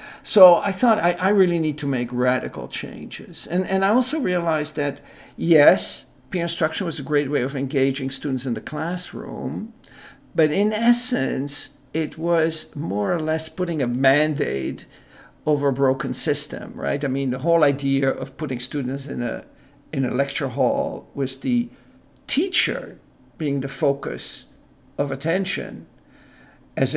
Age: 50-69